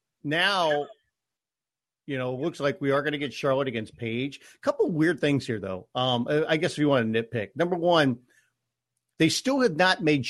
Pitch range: 120-150 Hz